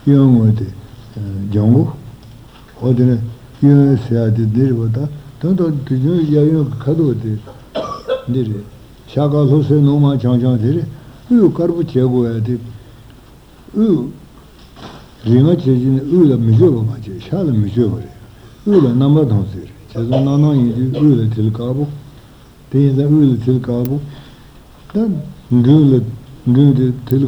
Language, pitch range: Italian, 115-140 Hz